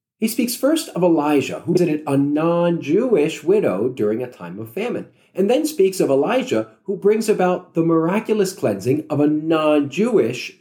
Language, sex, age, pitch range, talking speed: English, male, 40-59, 140-195 Hz, 165 wpm